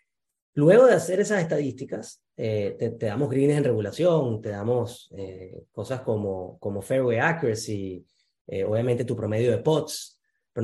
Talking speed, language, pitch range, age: 150 wpm, Spanish, 115-145 Hz, 30-49